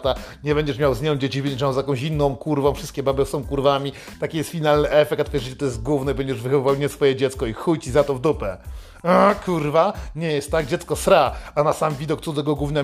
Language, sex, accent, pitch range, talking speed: Polish, male, native, 145-195 Hz, 235 wpm